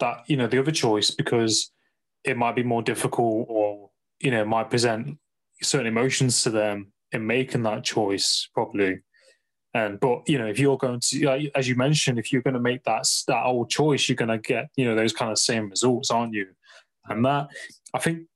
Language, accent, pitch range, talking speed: English, British, 110-135 Hz, 205 wpm